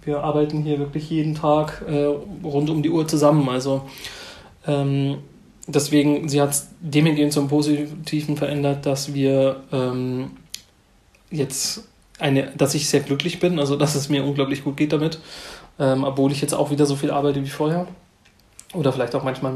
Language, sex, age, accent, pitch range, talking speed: German, male, 30-49, German, 140-155 Hz, 165 wpm